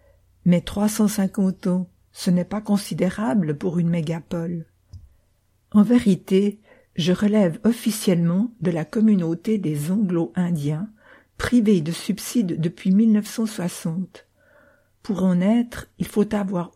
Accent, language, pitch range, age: French, English, 165-205 Hz, 60-79